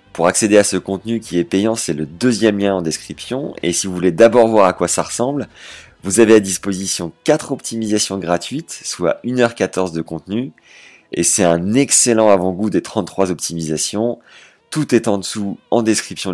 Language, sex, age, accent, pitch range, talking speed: French, male, 30-49, French, 90-120 Hz, 180 wpm